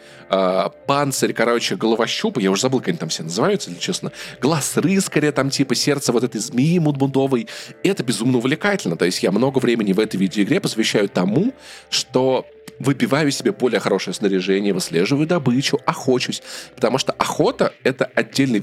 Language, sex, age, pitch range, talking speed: Russian, male, 20-39, 120-165 Hz, 160 wpm